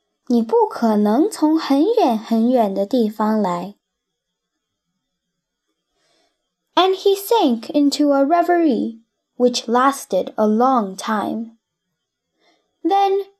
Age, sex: 10-29, female